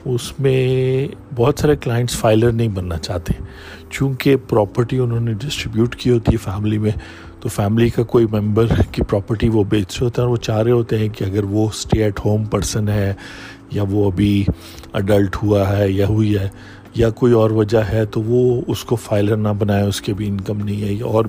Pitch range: 100-120 Hz